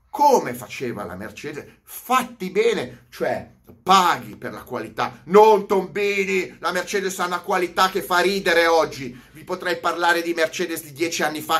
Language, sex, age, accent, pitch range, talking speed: Italian, male, 30-49, native, 130-185 Hz, 160 wpm